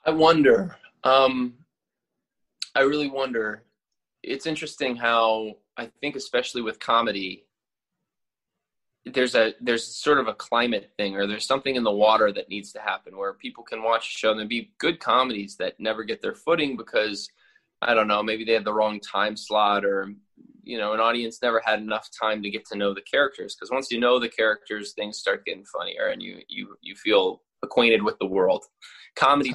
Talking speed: 190 wpm